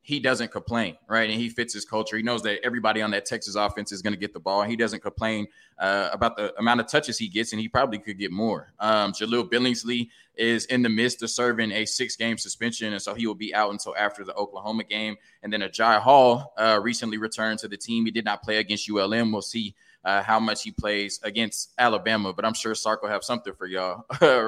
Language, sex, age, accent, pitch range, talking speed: English, male, 20-39, American, 110-125 Hz, 240 wpm